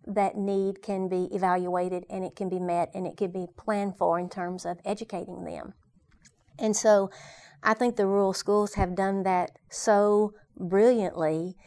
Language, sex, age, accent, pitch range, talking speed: English, female, 40-59, American, 185-210 Hz, 170 wpm